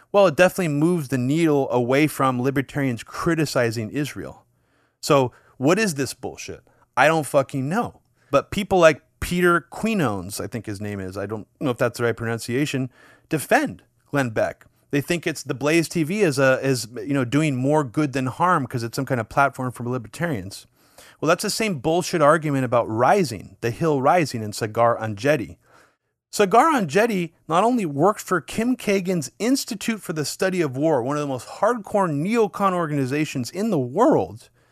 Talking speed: 180 wpm